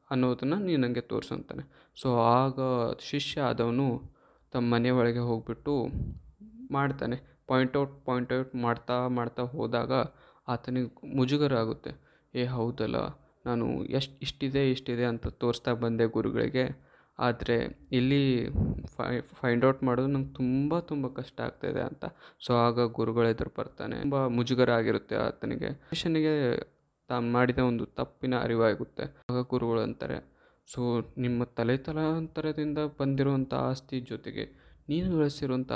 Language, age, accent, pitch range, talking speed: Kannada, 20-39, native, 120-140 Hz, 110 wpm